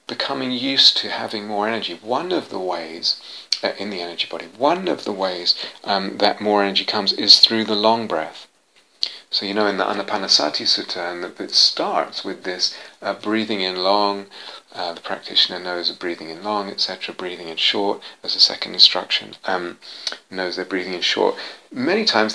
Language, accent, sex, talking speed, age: English, British, male, 190 wpm, 30-49